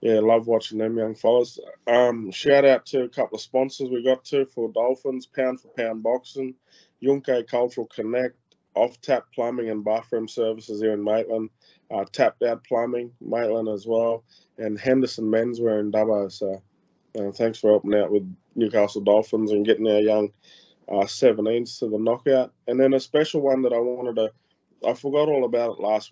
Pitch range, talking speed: 105-120 Hz, 180 wpm